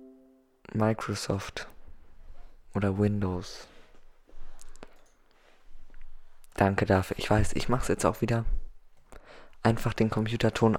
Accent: German